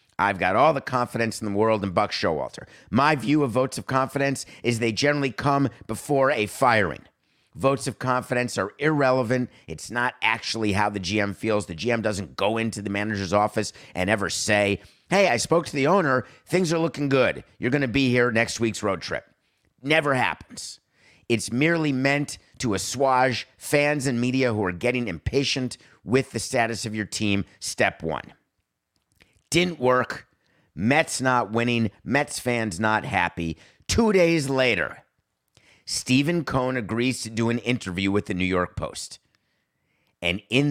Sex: male